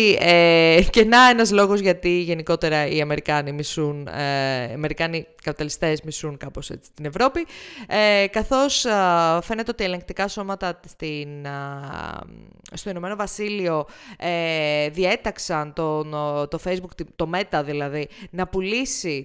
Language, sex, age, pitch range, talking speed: Greek, female, 20-39, 155-195 Hz, 130 wpm